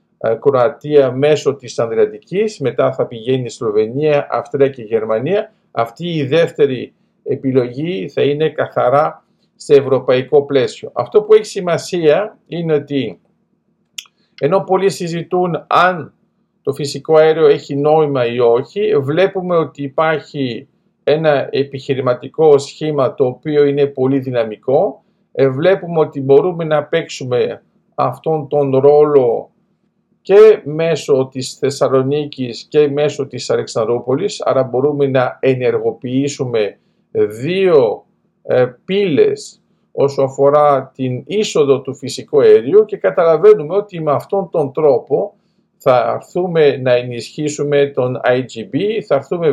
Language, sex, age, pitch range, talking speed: Greek, male, 50-69, 140-200 Hz, 115 wpm